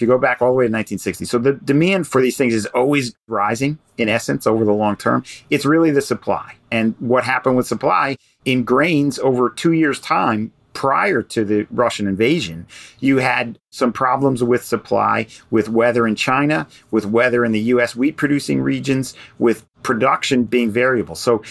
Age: 40-59